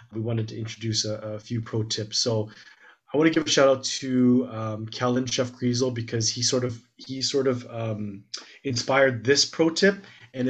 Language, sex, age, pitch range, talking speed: English, male, 30-49, 115-135 Hz, 200 wpm